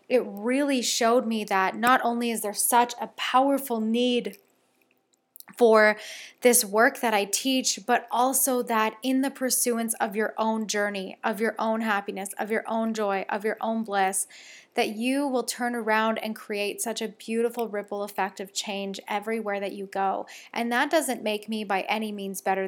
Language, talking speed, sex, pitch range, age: English, 180 wpm, female, 200-235 Hz, 20-39